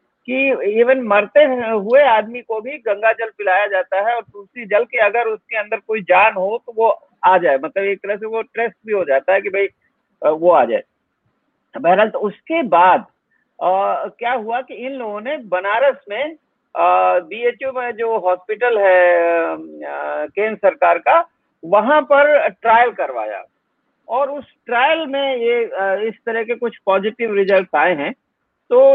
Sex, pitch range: male, 195-255 Hz